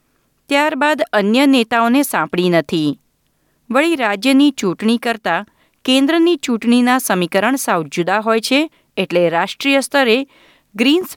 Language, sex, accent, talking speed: Gujarati, female, native, 105 wpm